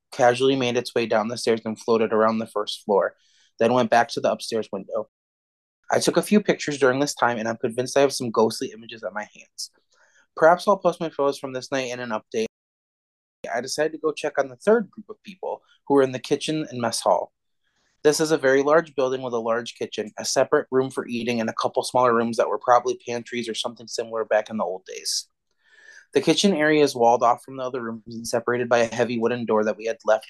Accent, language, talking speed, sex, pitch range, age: American, English, 240 wpm, male, 115-140 Hz, 20-39